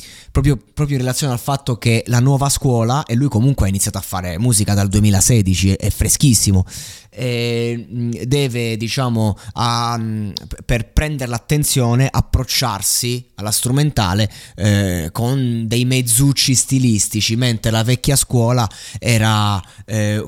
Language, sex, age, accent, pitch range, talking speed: Italian, male, 20-39, native, 105-130 Hz, 130 wpm